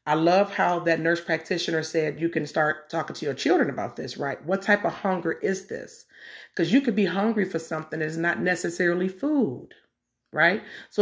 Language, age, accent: English, 40-59, American